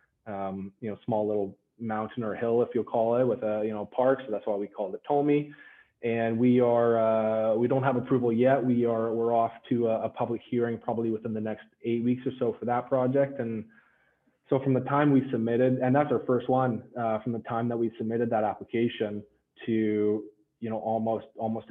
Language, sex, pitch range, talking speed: English, male, 110-125 Hz, 220 wpm